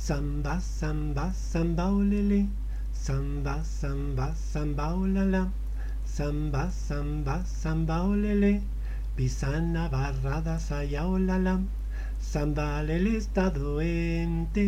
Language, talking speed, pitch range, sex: Spanish, 95 wpm, 140-180 Hz, male